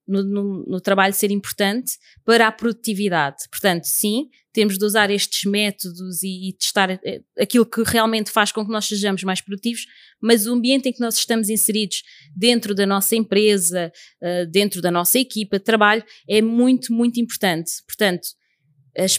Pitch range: 195-235 Hz